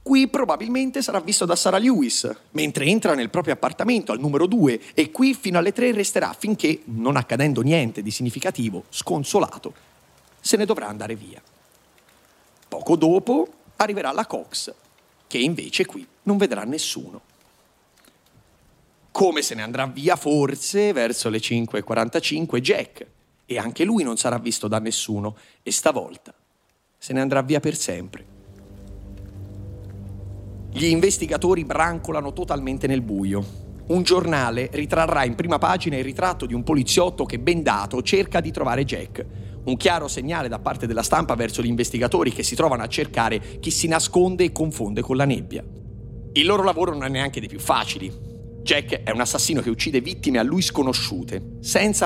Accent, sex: native, male